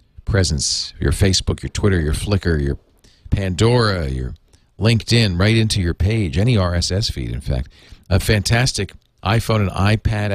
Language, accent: English, American